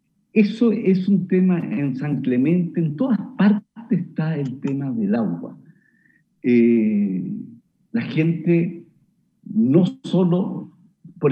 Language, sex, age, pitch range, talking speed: Spanish, male, 50-69, 160-220 Hz, 110 wpm